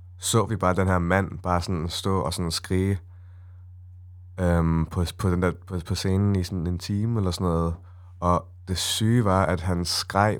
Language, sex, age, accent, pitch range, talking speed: Danish, male, 20-39, native, 90-100 Hz, 195 wpm